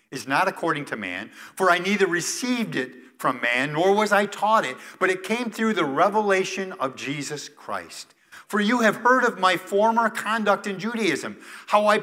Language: English